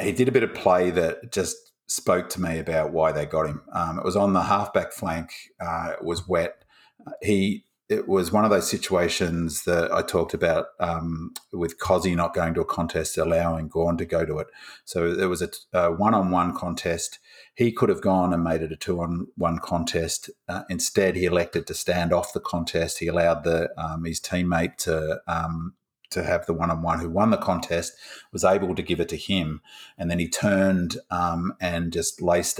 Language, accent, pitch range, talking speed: English, Australian, 80-90 Hz, 200 wpm